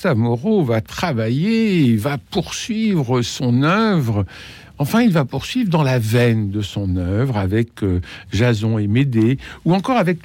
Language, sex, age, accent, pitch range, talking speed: French, male, 60-79, French, 105-150 Hz, 145 wpm